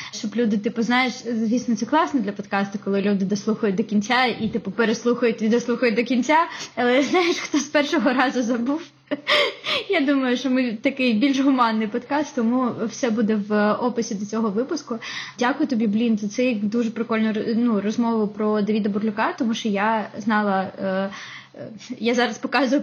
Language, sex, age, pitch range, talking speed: Ukrainian, female, 20-39, 210-245 Hz, 170 wpm